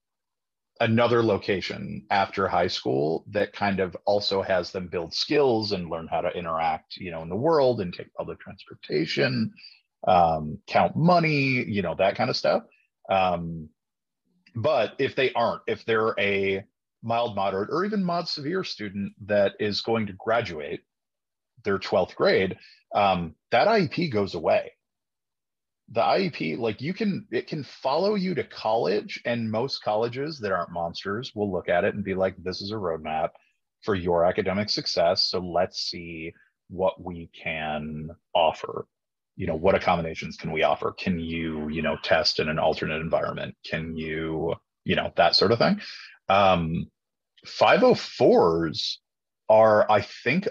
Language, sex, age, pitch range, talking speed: English, male, 30-49, 85-120 Hz, 155 wpm